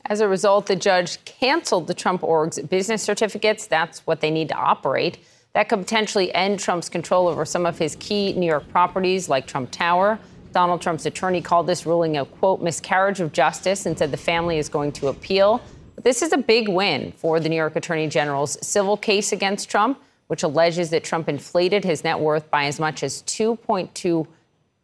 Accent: American